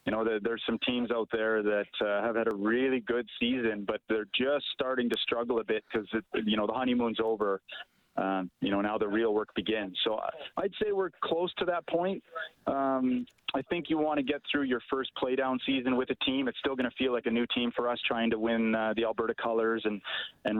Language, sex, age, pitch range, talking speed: English, male, 30-49, 110-130 Hz, 235 wpm